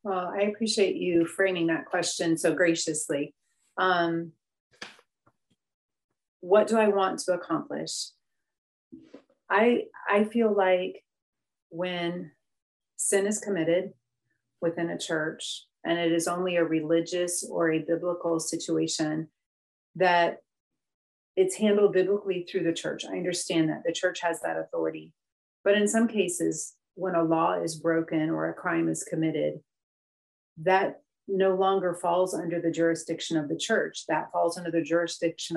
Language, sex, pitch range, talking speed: English, female, 165-195 Hz, 135 wpm